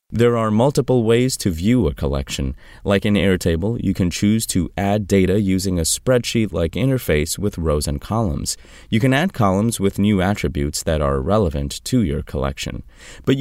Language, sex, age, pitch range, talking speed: English, male, 30-49, 80-115 Hz, 175 wpm